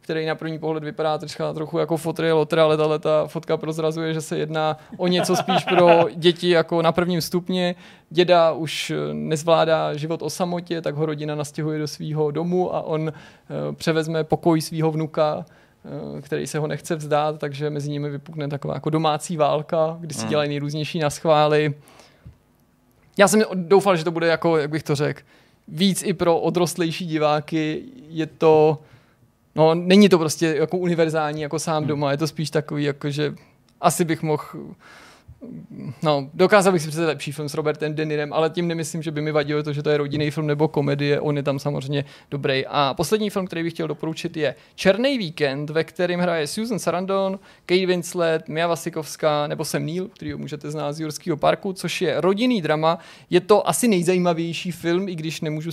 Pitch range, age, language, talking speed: 150-175 Hz, 20-39, Czech, 180 wpm